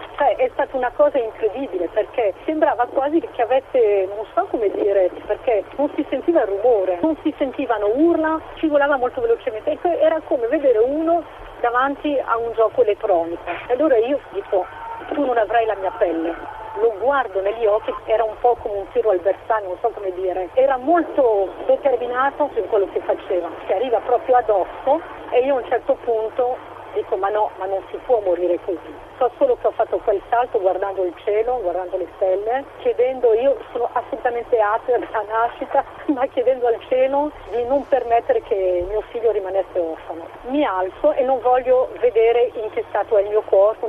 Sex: female